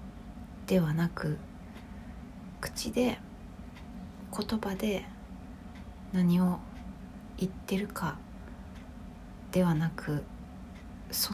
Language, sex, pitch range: Japanese, female, 165-190 Hz